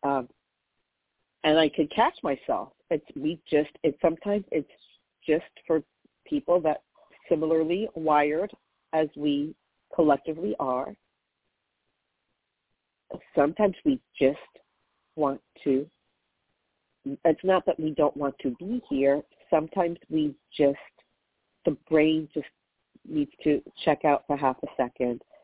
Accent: American